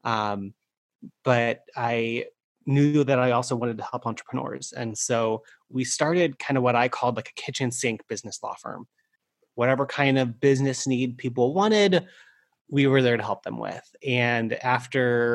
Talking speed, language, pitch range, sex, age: 170 wpm, English, 110-135 Hz, male, 30-49